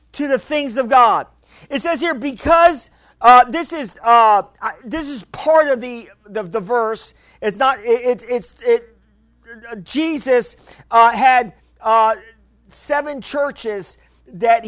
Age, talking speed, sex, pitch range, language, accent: 50-69, 145 wpm, male, 215-265 Hz, English, American